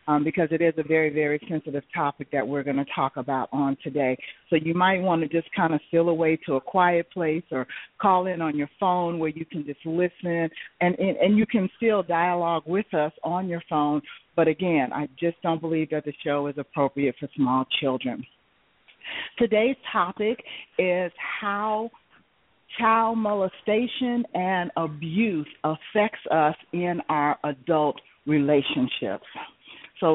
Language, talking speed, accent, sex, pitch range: English, 165 wpm, American, female, 150-190 Hz